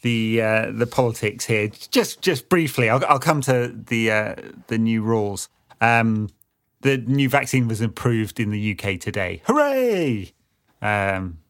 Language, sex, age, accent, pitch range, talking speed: English, male, 30-49, British, 105-130 Hz, 150 wpm